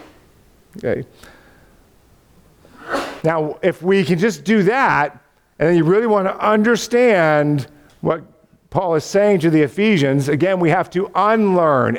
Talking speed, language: 135 wpm, English